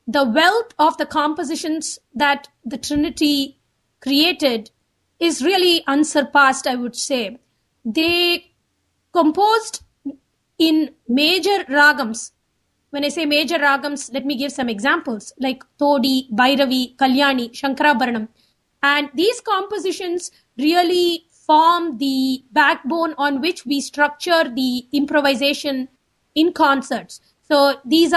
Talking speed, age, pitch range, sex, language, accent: 110 wpm, 20-39, 270-330 Hz, female, English, Indian